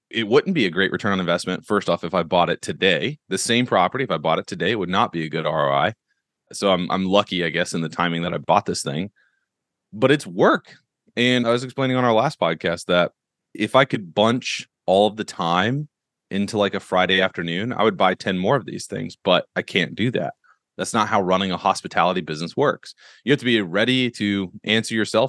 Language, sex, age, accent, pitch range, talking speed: English, male, 30-49, American, 95-135 Hz, 235 wpm